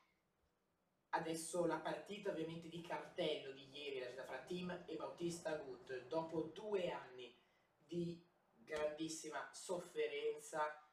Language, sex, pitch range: Italian, male, 145-180 Hz